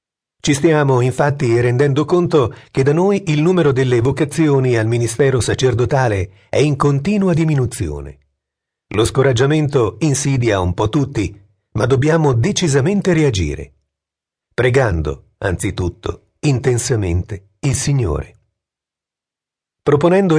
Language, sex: Italian, male